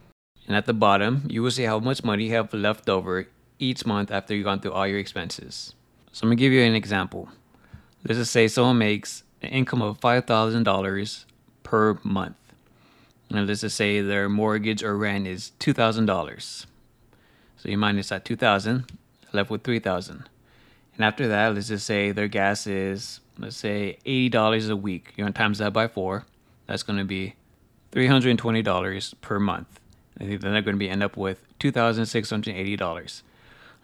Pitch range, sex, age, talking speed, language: 100-115 Hz, male, 20-39, 170 wpm, English